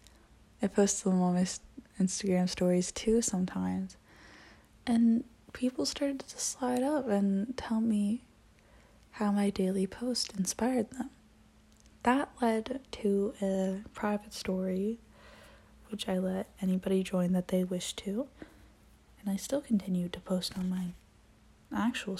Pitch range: 185-220 Hz